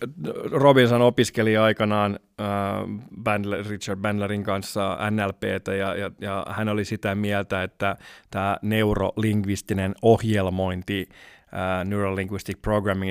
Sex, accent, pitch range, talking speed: male, native, 95-105 Hz, 105 wpm